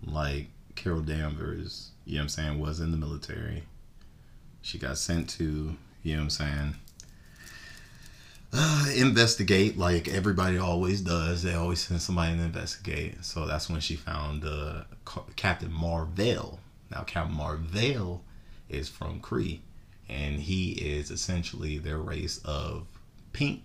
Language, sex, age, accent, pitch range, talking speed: English, male, 30-49, American, 75-90 Hz, 140 wpm